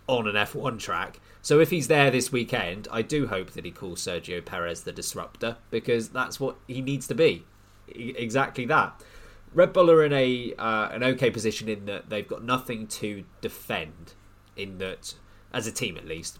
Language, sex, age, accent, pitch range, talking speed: English, male, 20-39, British, 100-130 Hz, 195 wpm